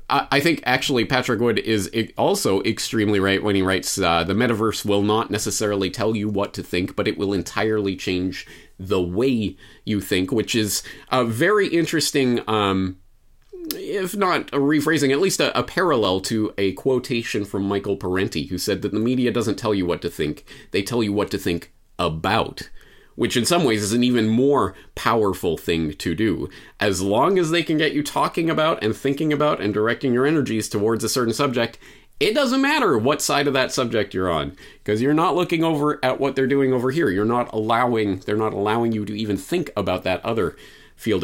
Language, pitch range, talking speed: English, 105-135 Hz, 200 wpm